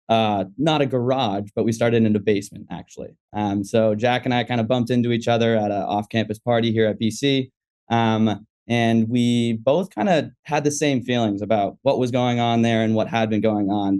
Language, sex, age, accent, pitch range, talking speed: English, male, 20-39, American, 110-125 Hz, 220 wpm